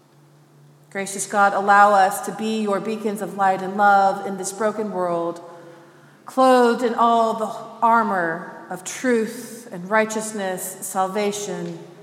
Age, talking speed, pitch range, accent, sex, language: 30-49, 130 wpm, 175-210 Hz, American, female, English